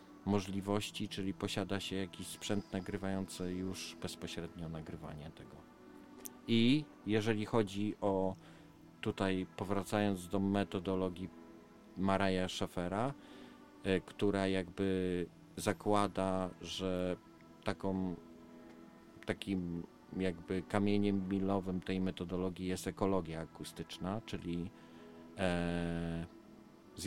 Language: Polish